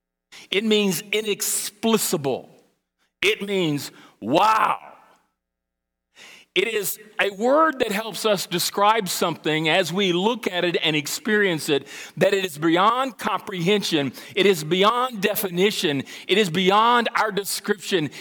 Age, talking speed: 40-59, 120 wpm